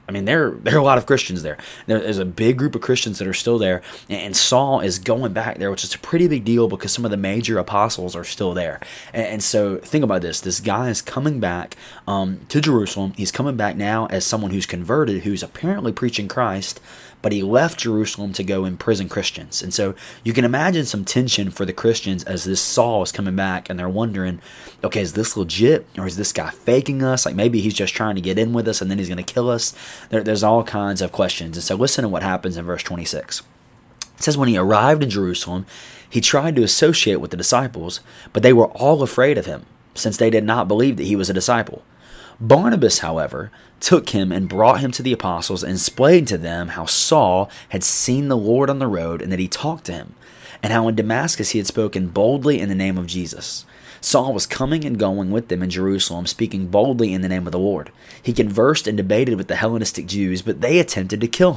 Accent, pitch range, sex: American, 95-120 Hz, male